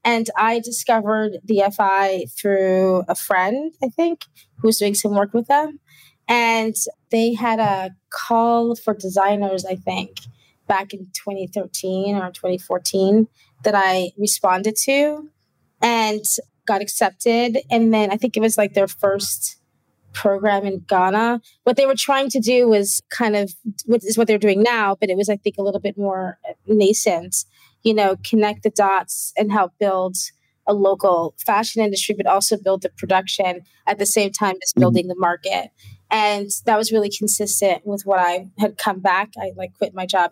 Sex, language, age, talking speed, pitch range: female, English, 20-39, 175 wpm, 185-220 Hz